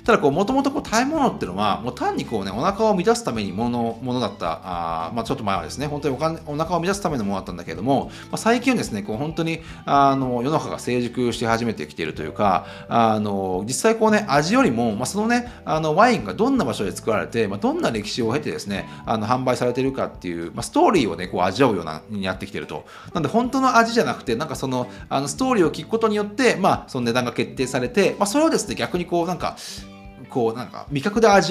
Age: 30-49